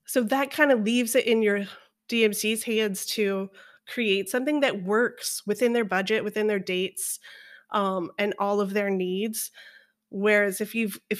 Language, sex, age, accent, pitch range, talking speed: English, female, 20-39, American, 195-240 Hz, 165 wpm